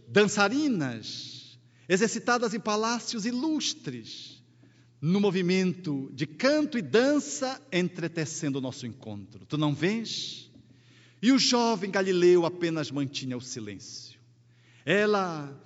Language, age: Portuguese, 50-69